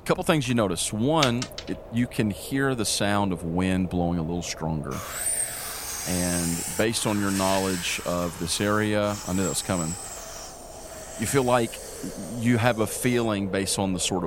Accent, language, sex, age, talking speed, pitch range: American, English, male, 40-59, 170 wpm, 85-105 Hz